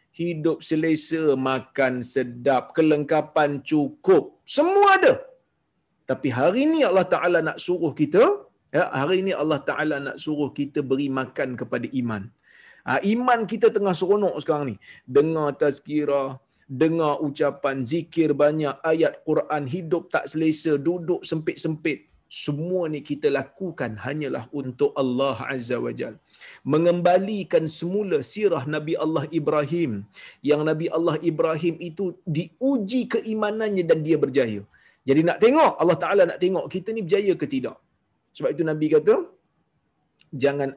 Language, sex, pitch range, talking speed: Malayalam, male, 140-180 Hz, 135 wpm